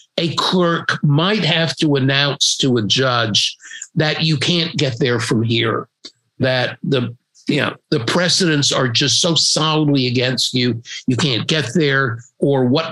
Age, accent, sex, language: 50-69, American, male, English